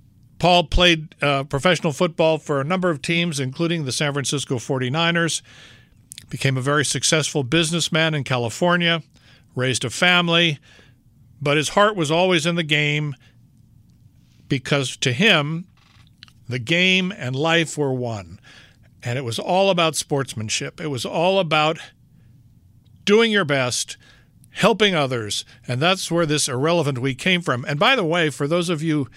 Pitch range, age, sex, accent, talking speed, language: 125-170 Hz, 60-79, male, American, 150 wpm, English